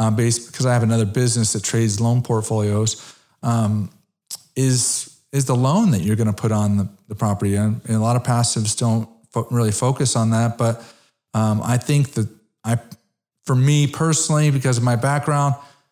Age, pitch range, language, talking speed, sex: 40-59, 110-130 Hz, English, 190 wpm, male